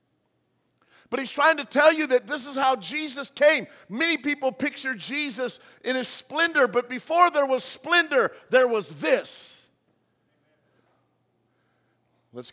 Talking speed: 135 wpm